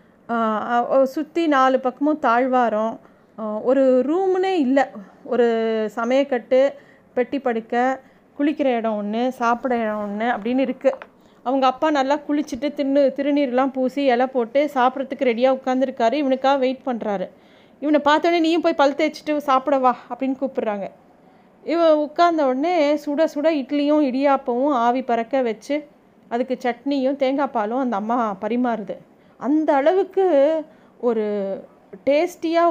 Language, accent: Tamil, native